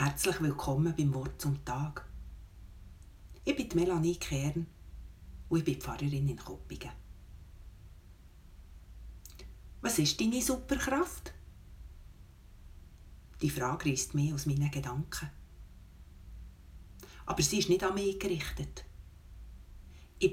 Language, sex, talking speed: German, female, 105 wpm